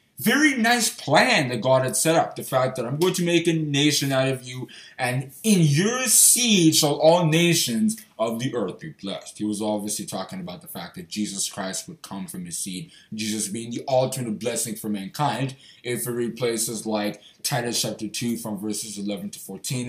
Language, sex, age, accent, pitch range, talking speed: English, male, 20-39, American, 125-180 Hz, 200 wpm